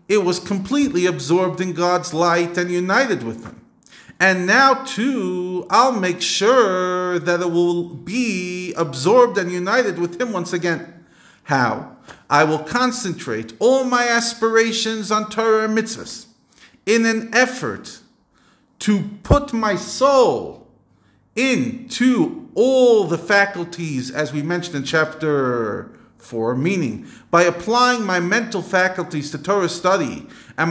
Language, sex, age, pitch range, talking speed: English, male, 40-59, 165-235 Hz, 130 wpm